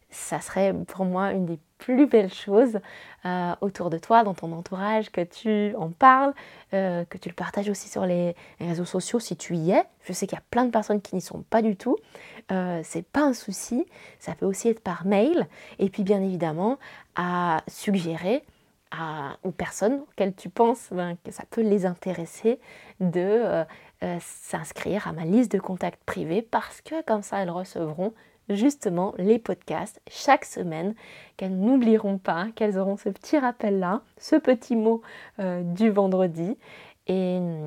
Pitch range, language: 180-230 Hz, French